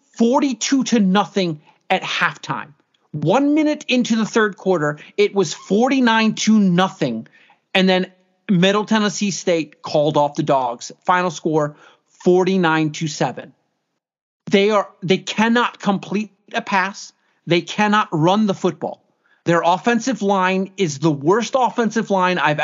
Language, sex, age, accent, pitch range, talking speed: English, male, 40-59, American, 170-225 Hz, 135 wpm